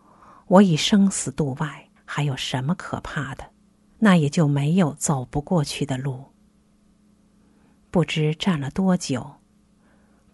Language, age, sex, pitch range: Chinese, 50-69, female, 140-185 Hz